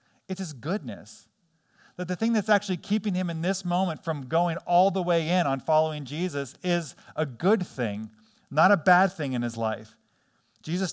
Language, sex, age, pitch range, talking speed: English, male, 40-59, 155-200 Hz, 185 wpm